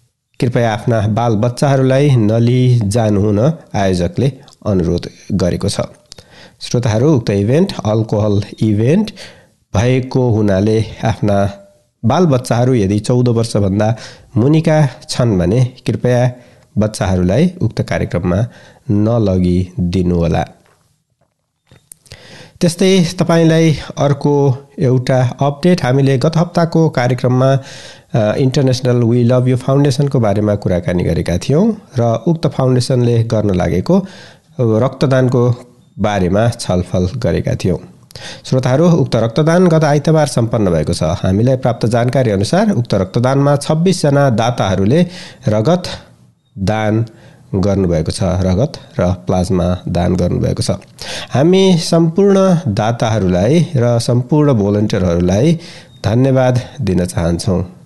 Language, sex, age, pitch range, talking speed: English, male, 60-79, 105-140 Hz, 95 wpm